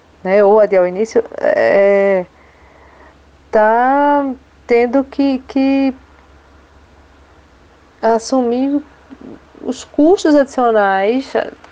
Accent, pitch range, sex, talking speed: Brazilian, 185-250 Hz, female, 65 wpm